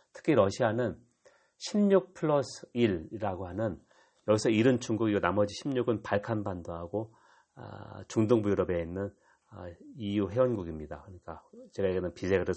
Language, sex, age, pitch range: Korean, male, 40-59, 95-125 Hz